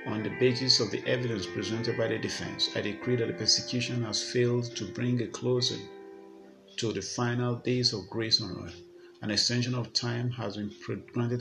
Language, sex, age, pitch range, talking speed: English, male, 50-69, 110-125 Hz, 190 wpm